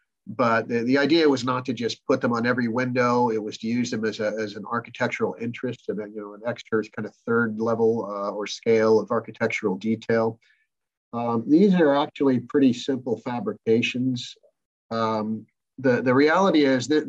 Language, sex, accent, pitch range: English, male, American, 110-125 Hz